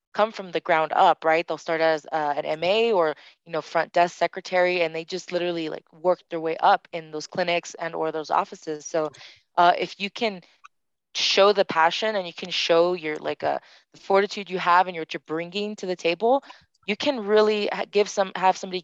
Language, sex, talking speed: English, female, 215 wpm